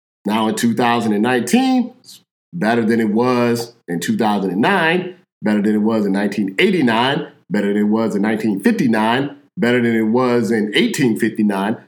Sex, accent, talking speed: male, American, 140 wpm